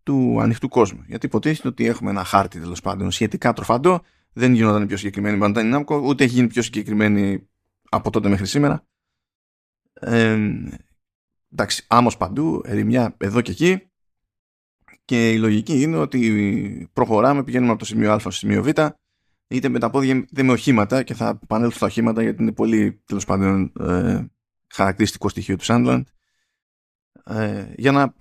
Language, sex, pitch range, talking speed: Greek, male, 100-135 Hz, 155 wpm